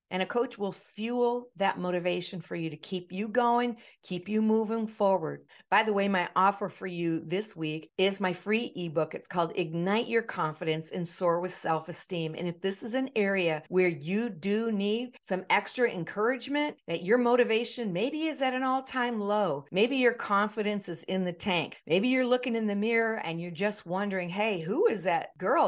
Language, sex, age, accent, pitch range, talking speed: English, female, 50-69, American, 170-215 Hz, 195 wpm